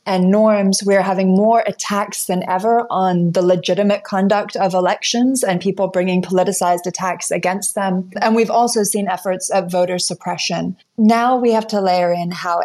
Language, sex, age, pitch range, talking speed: English, female, 30-49, 180-215 Hz, 170 wpm